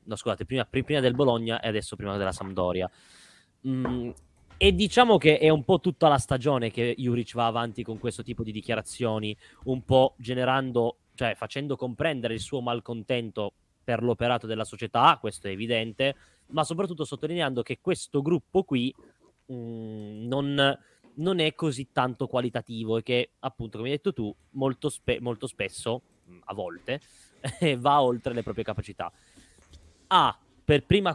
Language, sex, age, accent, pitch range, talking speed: Italian, male, 20-39, native, 115-140 Hz, 155 wpm